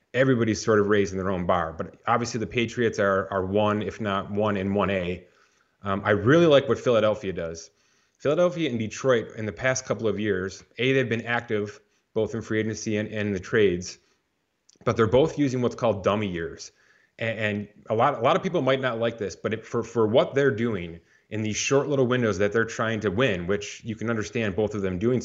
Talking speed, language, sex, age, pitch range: 220 wpm, English, male, 30-49, 100-125 Hz